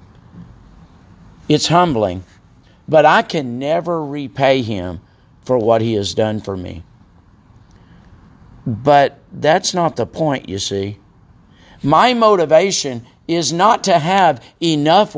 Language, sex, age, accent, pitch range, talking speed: English, male, 50-69, American, 100-170 Hz, 115 wpm